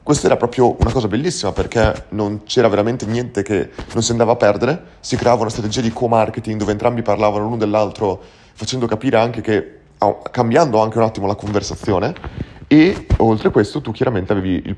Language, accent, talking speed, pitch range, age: Italian, native, 185 wpm, 100-120 Hz, 30-49